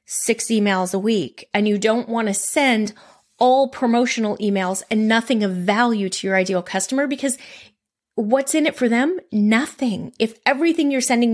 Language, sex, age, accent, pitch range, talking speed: English, female, 30-49, American, 190-250 Hz, 170 wpm